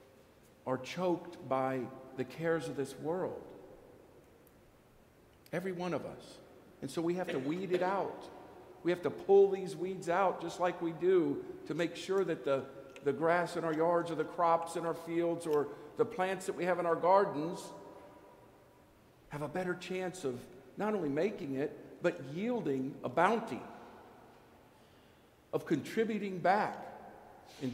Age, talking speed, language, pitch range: 50-69, 160 wpm, English, 130-180 Hz